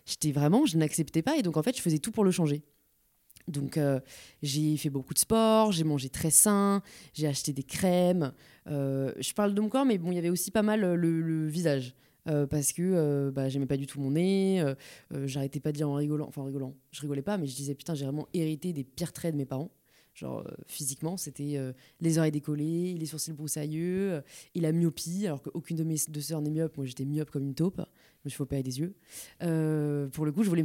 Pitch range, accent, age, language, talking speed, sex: 145-180 Hz, French, 20-39, French, 245 wpm, female